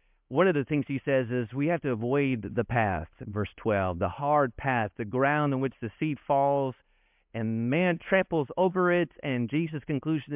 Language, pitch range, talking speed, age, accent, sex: English, 135-205 Hz, 190 wpm, 40-59, American, male